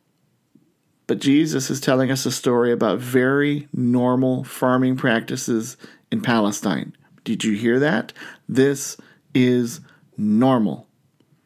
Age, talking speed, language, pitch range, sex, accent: 40-59, 110 wpm, English, 125-155 Hz, male, American